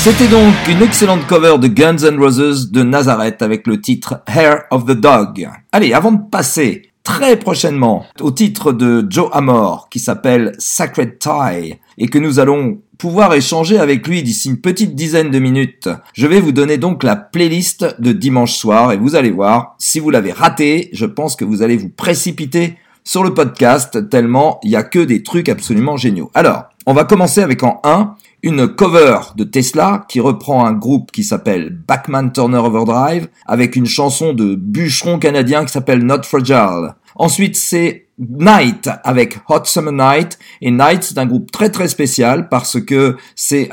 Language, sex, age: French, male, 50-69